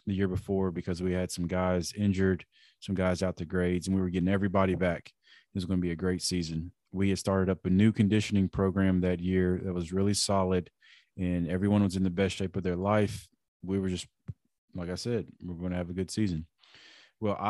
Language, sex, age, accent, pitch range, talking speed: English, male, 20-39, American, 90-105 Hz, 225 wpm